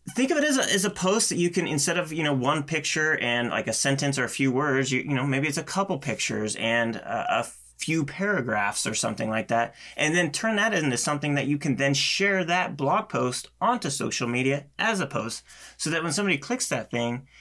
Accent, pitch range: American, 115-160 Hz